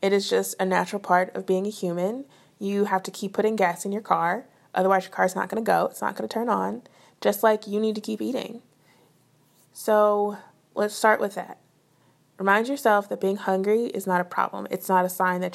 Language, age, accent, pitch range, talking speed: English, 20-39, American, 190-220 Hz, 215 wpm